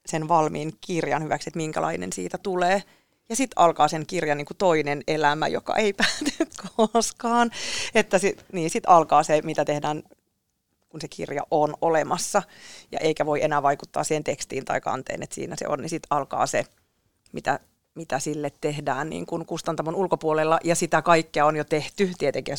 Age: 30-49